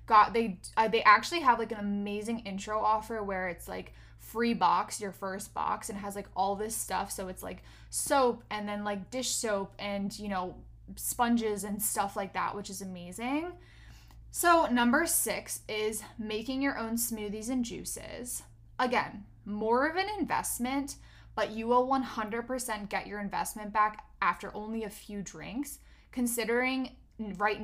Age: 10-29